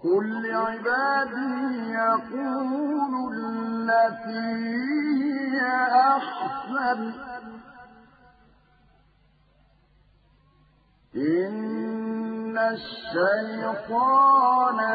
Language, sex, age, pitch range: Arabic, male, 50-69, 225-275 Hz